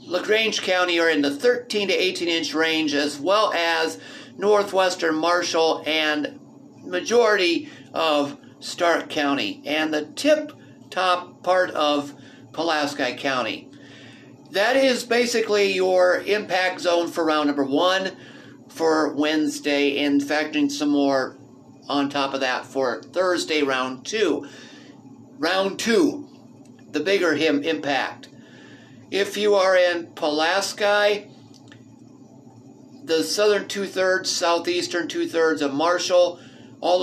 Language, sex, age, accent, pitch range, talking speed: English, male, 50-69, American, 150-190 Hz, 110 wpm